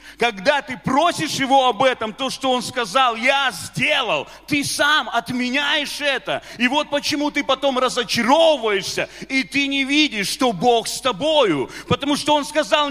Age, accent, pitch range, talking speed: 30-49, native, 245-300 Hz, 160 wpm